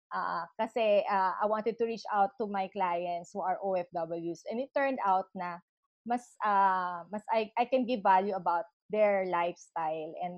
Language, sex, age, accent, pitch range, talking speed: English, female, 20-39, Filipino, 190-240 Hz, 170 wpm